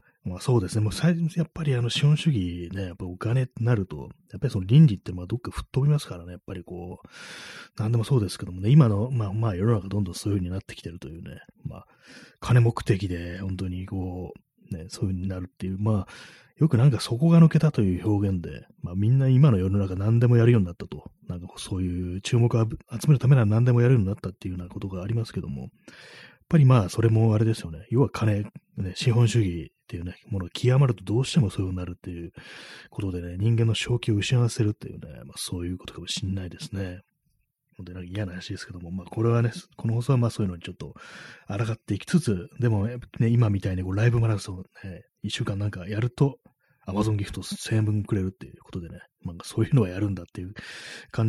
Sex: male